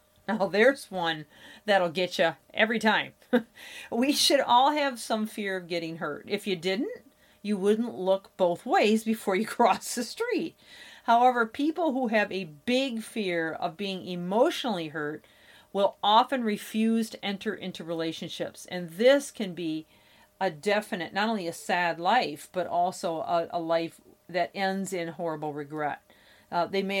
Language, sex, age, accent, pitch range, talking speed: English, female, 40-59, American, 170-225 Hz, 160 wpm